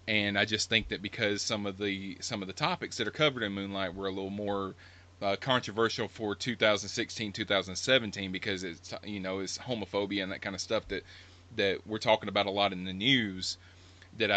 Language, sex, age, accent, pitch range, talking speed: English, male, 30-49, American, 95-115 Hz, 205 wpm